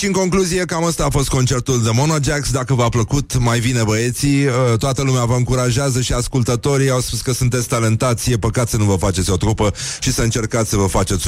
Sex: male